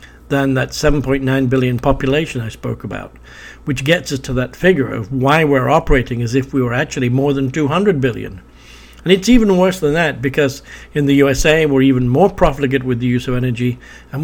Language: English